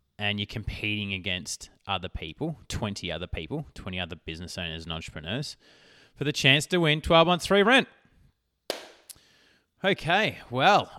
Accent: Australian